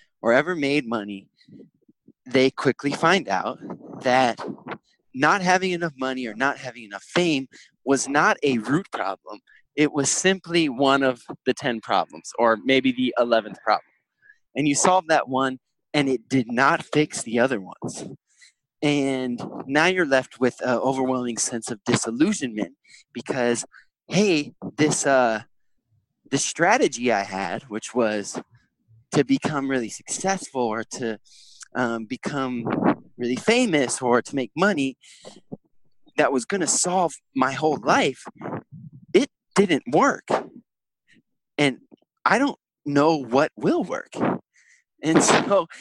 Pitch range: 115-150 Hz